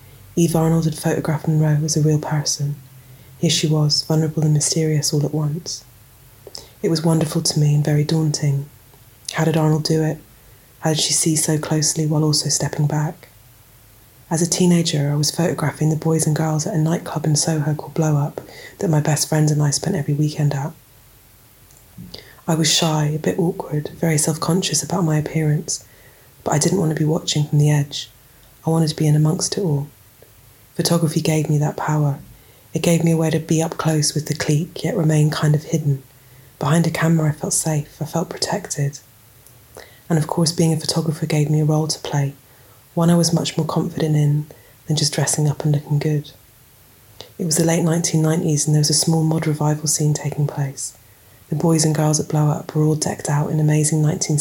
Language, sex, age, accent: English, female, 20-39, British